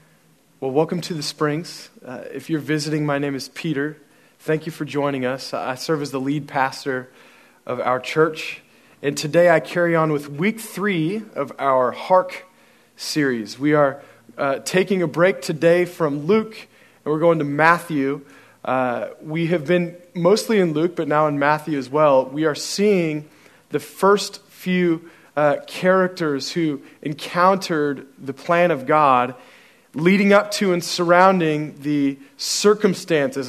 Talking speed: 155 wpm